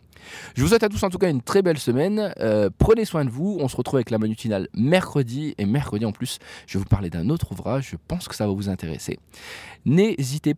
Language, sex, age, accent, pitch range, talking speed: French, male, 20-39, French, 105-150 Hz, 245 wpm